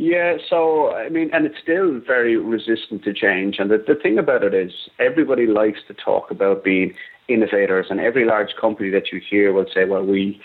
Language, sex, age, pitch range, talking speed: English, male, 30-49, 100-120 Hz, 205 wpm